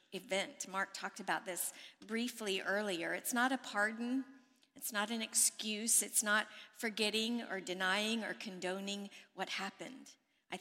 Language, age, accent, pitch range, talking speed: English, 50-69, American, 200-255 Hz, 140 wpm